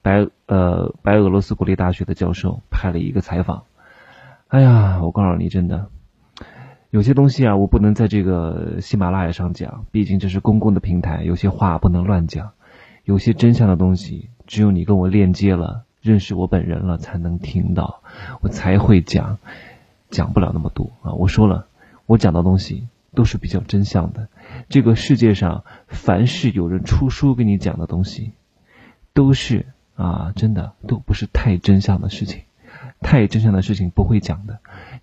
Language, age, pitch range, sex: Chinese, 20-39, 95-115 Hz, male